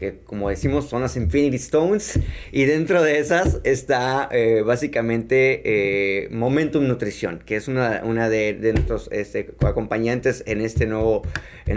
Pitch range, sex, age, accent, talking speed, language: 110-140 Hz, male, 30-49, Mexican, 155 wpm, English